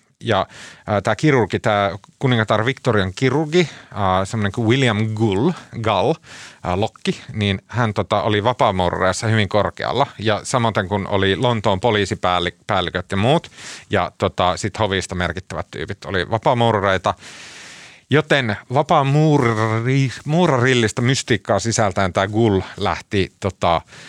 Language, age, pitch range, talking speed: Finnish, 30-49, 95-120 Hz, 110 wpm